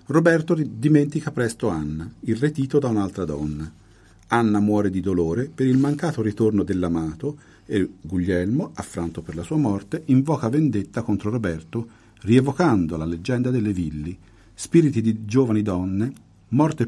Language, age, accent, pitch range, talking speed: Italian, 50-69, native, 95-130 Hz, 135 wpm